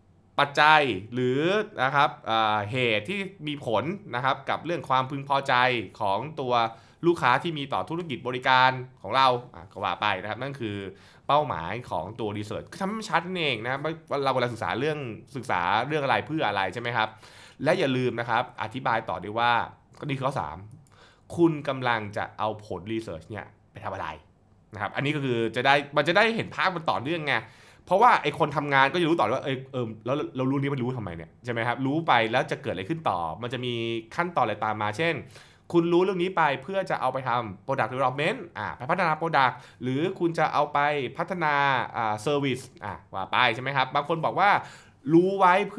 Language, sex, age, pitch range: Thai, male, 20-39, 115-160 Hz